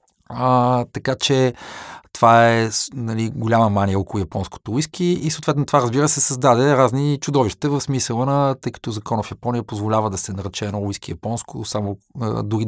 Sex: male